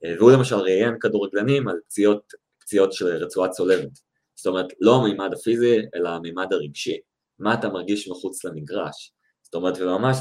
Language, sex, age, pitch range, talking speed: Hebrew, male, 20-39, 85-115 Hz, 145 wpm